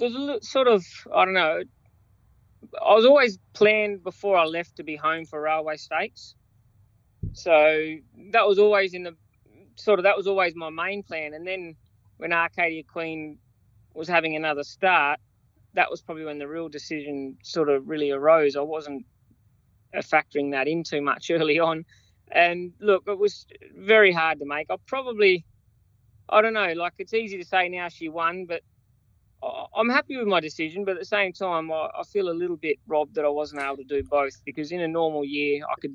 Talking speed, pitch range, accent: 190 wpm, 140-185 Hz, Australian